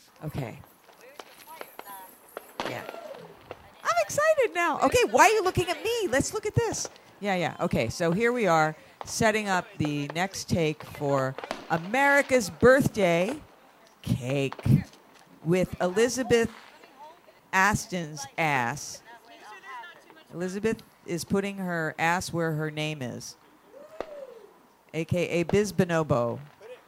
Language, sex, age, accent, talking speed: English, female, 50-69, American, 105 wpm